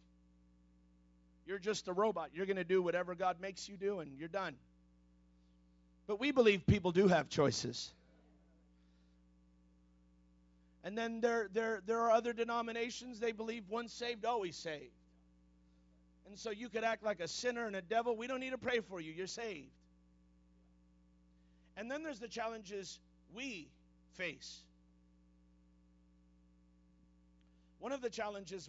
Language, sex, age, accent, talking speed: English, male, 50-69, American, 140 wpm